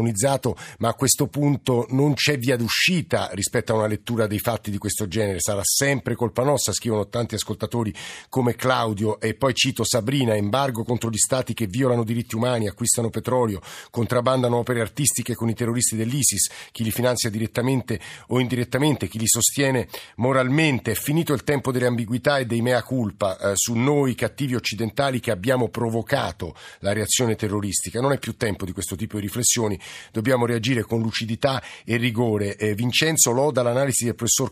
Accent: native